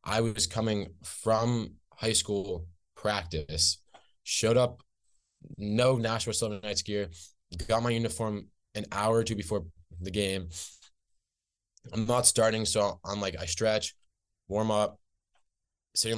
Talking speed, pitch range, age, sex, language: 130 wpm, 90-105 Hz, 20-39, male, English